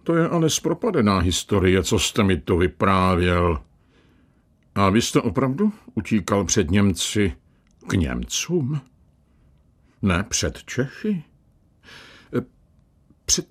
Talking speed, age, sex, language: 100 wpm, 60-79, male, Czech